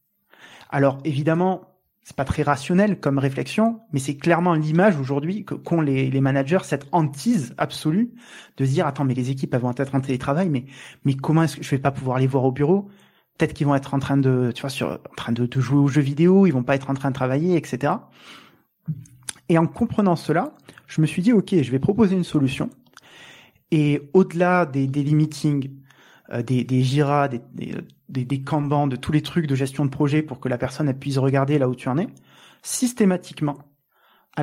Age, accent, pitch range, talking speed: 30-49, French, 135-170 Hz, 210 wpm